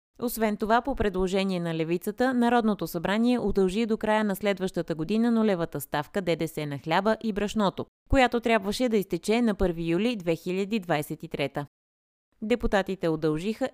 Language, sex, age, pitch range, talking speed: Bulgarian, female, 20-39, 165-220 Hz, 135 wpm